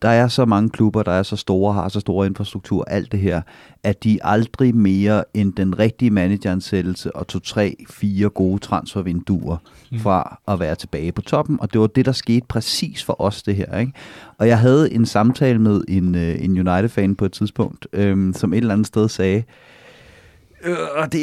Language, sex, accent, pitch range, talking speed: Danish, male, native, 100-130 Hz, 190 wpm